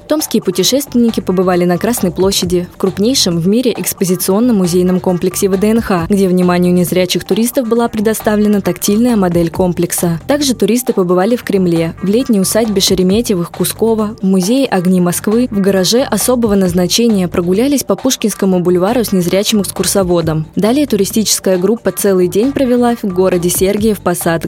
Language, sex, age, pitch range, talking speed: Russian, female, 20-39, 180-220 Hz, 145 wpm